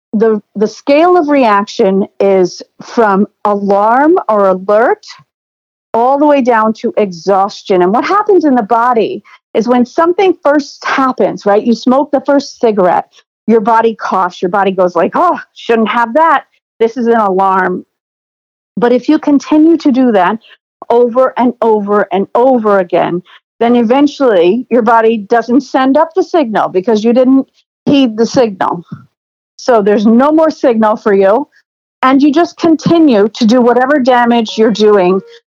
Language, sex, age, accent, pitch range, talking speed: English, female, 50-69, American, 215-285 Hz, 155 wpm